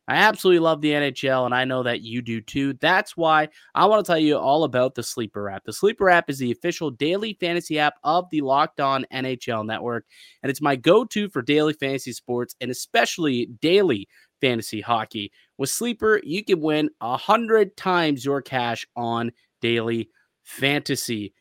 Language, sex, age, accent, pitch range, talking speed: English, male, 30-49, American, 120-165 Hz, 180 wpm